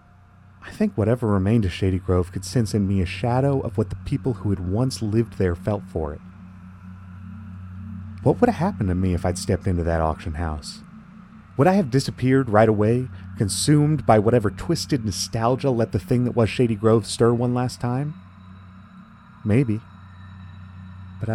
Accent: American